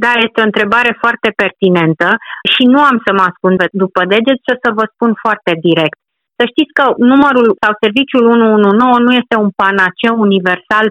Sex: female